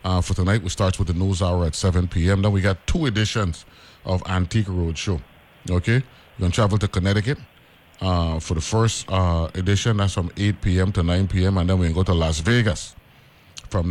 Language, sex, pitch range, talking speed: English, male, 90-110 Hz, 215 wpm